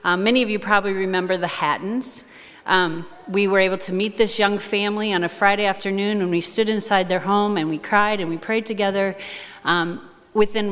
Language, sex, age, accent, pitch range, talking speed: English, female, 40-59, American, 180-215 Hz, 200 wpm